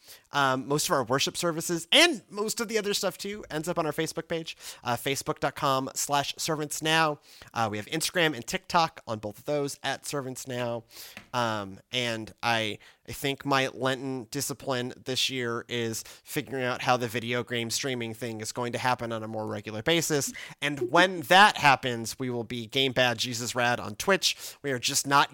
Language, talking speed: English, 190 wpm